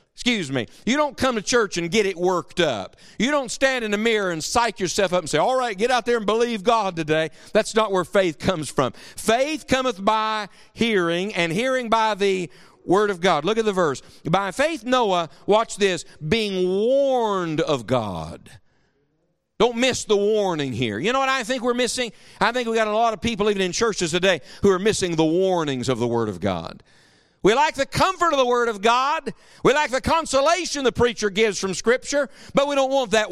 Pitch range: 180-245 Hz